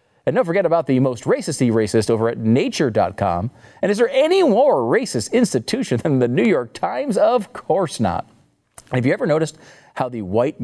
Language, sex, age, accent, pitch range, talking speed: English, male, 40-59, American, 105-165 Hz, 185 wpm